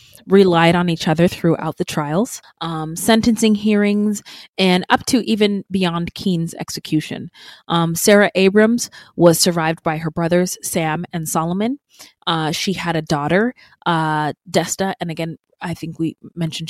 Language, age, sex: English, 20-39, female